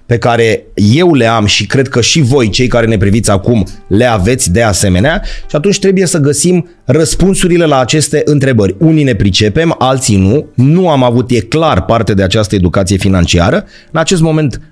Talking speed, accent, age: 190 wpm, native, 30-49